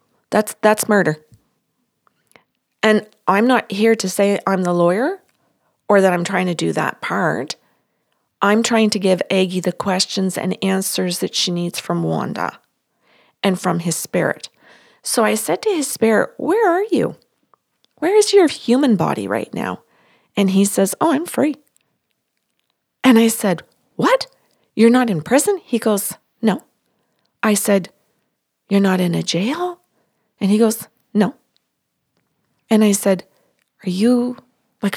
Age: 40-59